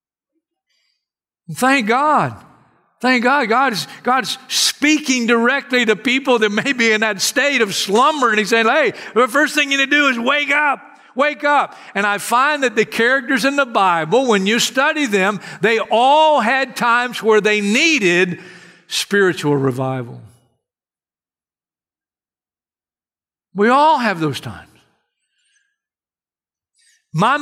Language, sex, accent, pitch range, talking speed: English, male, American, 155-260 Hz, 135 wpm